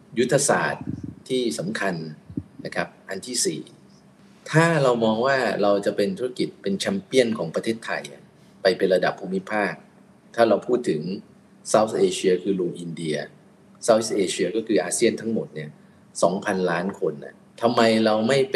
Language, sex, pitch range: Thai, male, 90-120 Hz